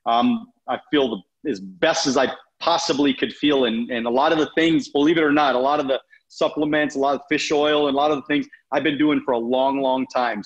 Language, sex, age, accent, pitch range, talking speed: English, male, 30-49, American, 130-175 Hz, 265 wpm